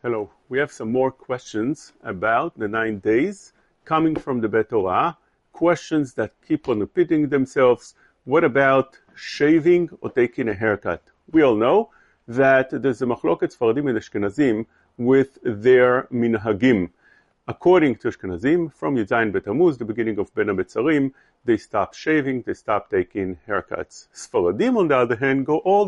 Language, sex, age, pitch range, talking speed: English, male, 40-59, 125-170 Hz, 150 wpm